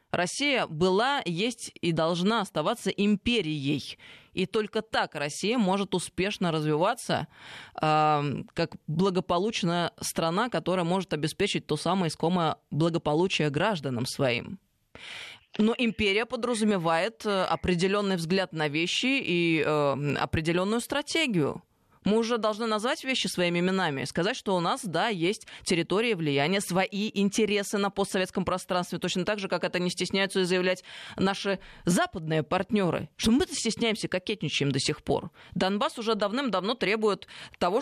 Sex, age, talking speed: female, 20-39, 125 wpm